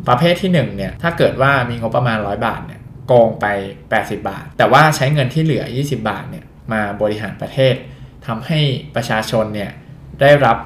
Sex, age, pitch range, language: male, 20-39, 110-135 Hz, Thai